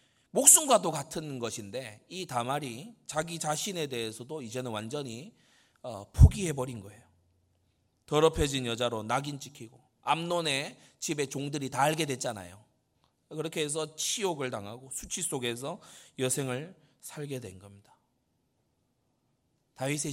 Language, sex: Korean, male